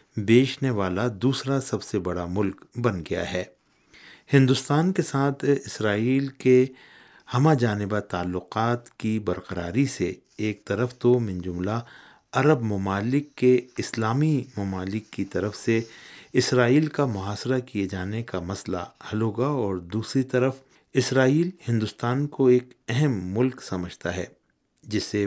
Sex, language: male, Urdu